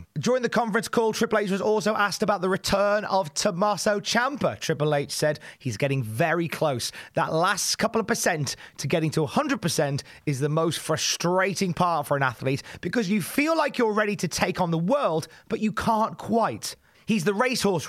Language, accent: English, British